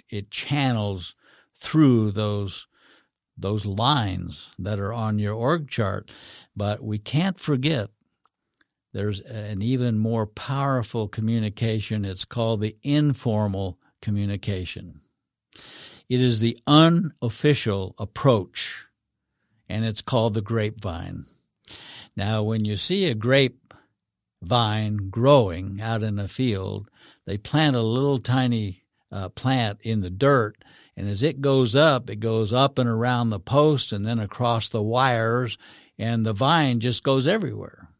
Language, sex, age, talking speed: English, male, 60-79, 130 wpm